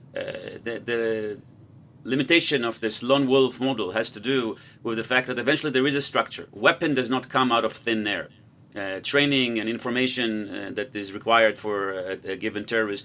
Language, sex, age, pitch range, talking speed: English, male, 30-49, 105-130 Hz, 195 wpm